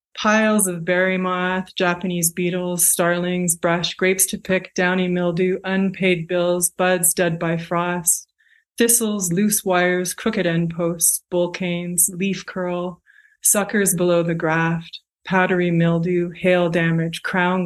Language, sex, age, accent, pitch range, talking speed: English, female, 20-39, American, 170-185 Hz, 130 wpm